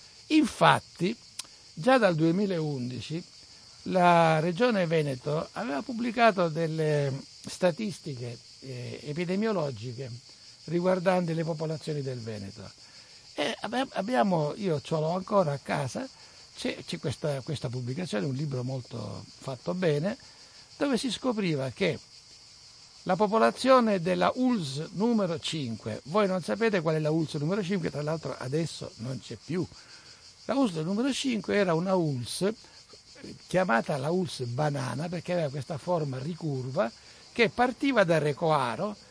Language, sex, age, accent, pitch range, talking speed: Italian, male, 60-79, native, 140-200 Hz, 120 wpm